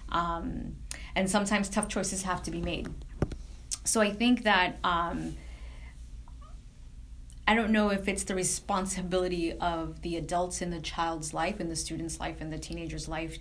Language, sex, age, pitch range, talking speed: English, female, 20-39, 155-175 Hz, 160 wpm